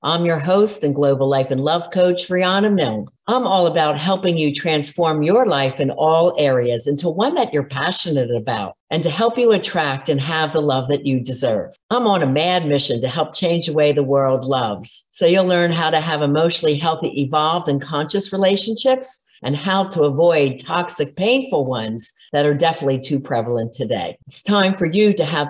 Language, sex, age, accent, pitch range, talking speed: English, female, 50-69, American, 140-180 Hz, 200 wpm